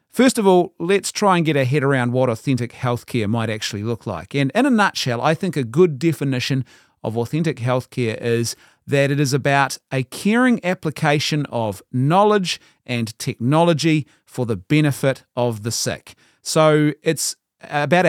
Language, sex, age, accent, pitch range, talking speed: English, male, 40-59, Australian, 120-165 Hz, 165 wpm